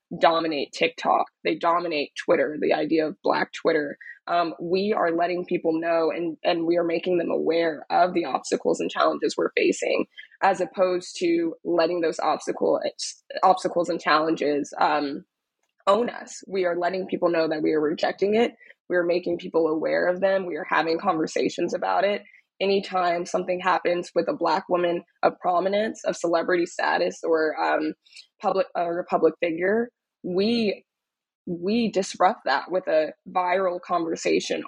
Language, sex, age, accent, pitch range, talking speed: English, female, 20-39, American, 170-195 Hz, 155 wpm